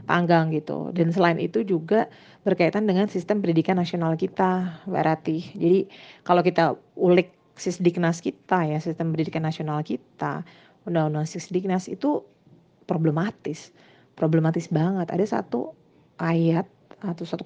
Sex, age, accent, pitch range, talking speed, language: female, 30-49, native, 165-195 Hz, 125 wpm, Indonesian